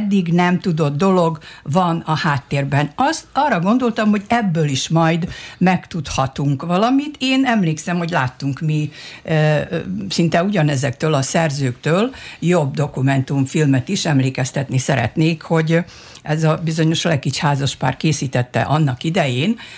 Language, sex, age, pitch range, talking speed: Hungarian, female, 60-79, 140-180 Hz, 115 wpm